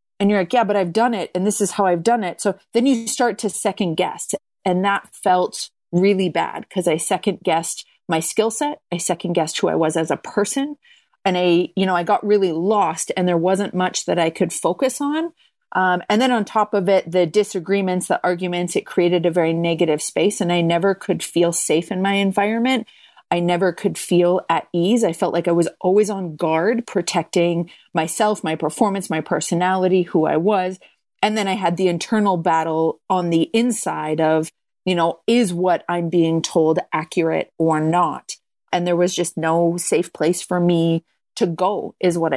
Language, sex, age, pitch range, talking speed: English, female, 30-49, 170-205 Hz, 205 wpm